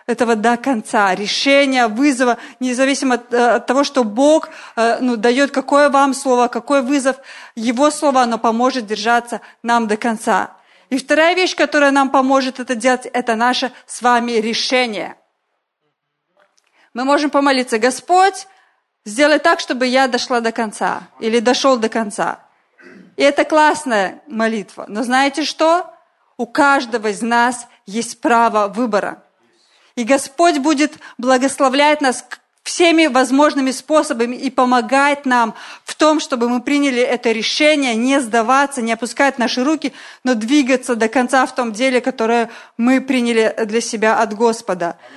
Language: Russian